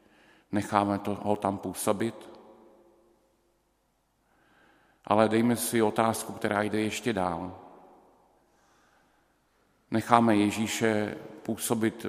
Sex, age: male, 50-69